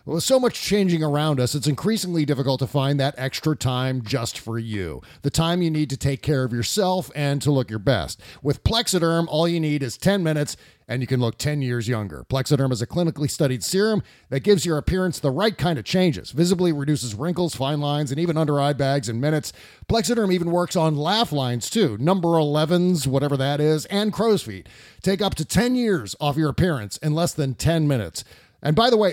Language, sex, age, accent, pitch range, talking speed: English, male, 40-59, American, 135-175 Hz, 215 wpm